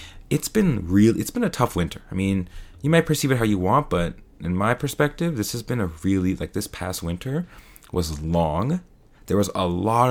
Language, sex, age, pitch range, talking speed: English, male, 20-39, 95-135 Hz, 215 wpm